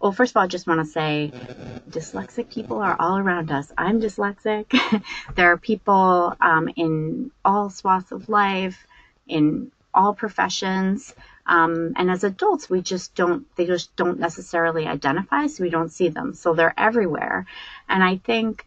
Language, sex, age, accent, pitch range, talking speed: English, female, 30-49, American, 160-200 Hz, 165 wpm